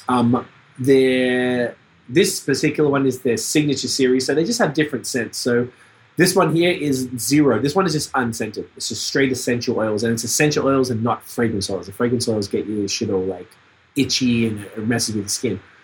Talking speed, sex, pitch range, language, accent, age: 200 wpm, male, 115-130 Hz, English, Australian, 20-39